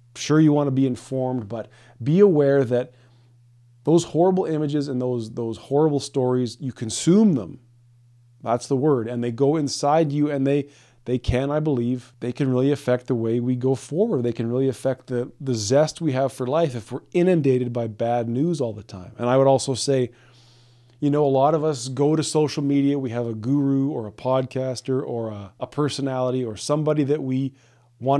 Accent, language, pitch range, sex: American, English, 120-145 Hz, male